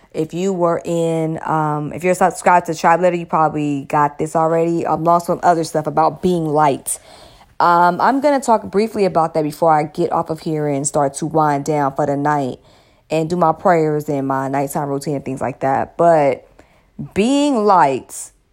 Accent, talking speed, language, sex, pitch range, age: American, 200 wpm, English, female, 150-180 Hz, 20-39